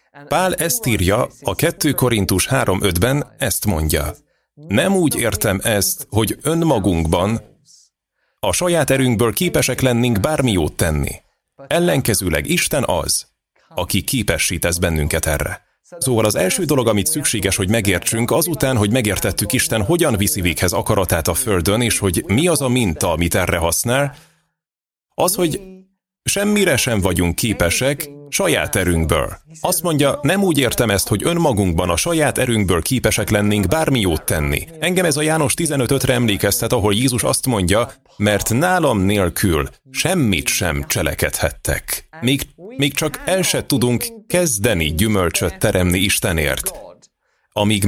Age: 30-49